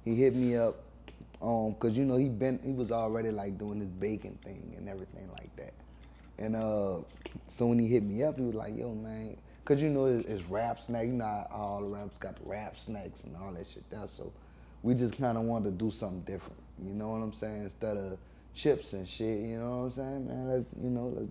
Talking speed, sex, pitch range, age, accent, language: 245 wpm, male, 105-125 Hz, 20-39, American, English